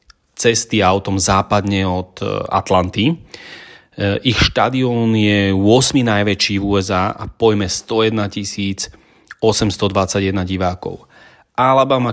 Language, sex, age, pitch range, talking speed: Slovak, male, 30-49, 95-110 Hz, 90 wpm